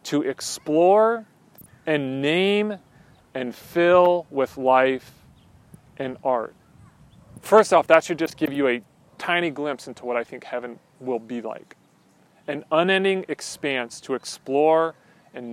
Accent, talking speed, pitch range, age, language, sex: American, 130 wpm, 130-160 Hz, 40-59, English, male